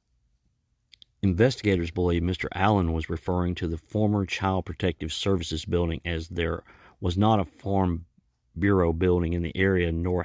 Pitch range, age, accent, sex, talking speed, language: 90-105 Hz, 40-59, American, male, 145 wpm, English